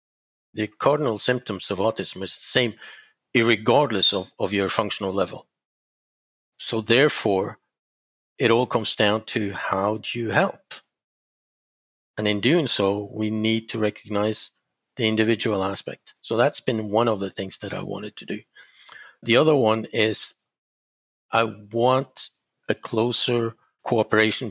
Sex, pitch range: male, 105-120 Hz